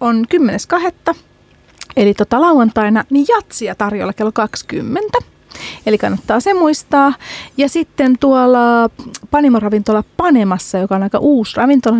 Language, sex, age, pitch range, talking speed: Finnish, female, 30-49, 210-270 Hz, 120 wpm